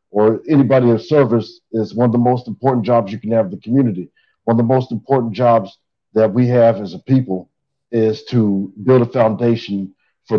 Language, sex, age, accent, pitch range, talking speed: English, male, 50-69, American, 105-125 Hz, 200 wpm